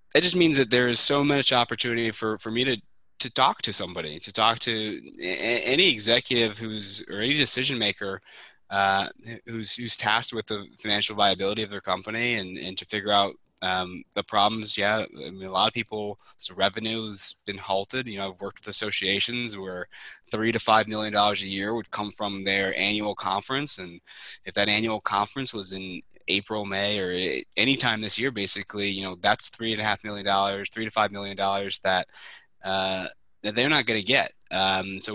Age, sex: 20-39, male